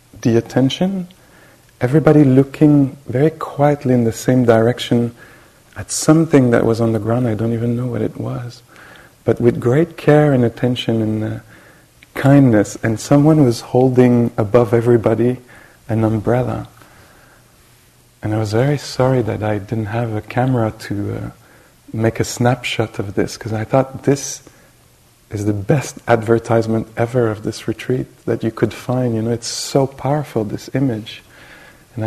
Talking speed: 155 wpm